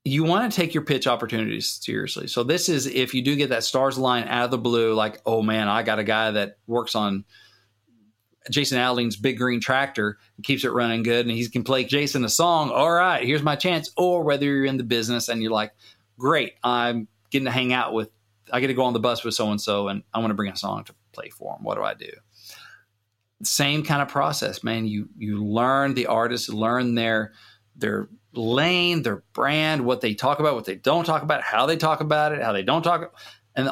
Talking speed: 230 wpm